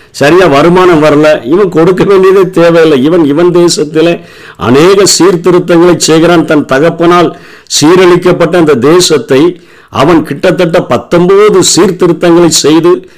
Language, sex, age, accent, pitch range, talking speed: Tamil, male, 50-69, native, 135-175 Hz, 105 wpm